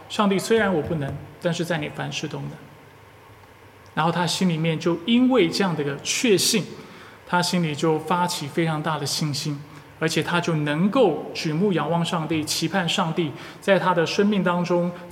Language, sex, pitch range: Chinese, male, 155-195 Hz